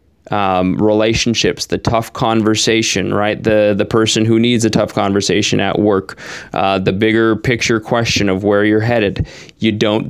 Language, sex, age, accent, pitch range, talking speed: English, male, 20-39, American, 105-135 Hz, 160 wpm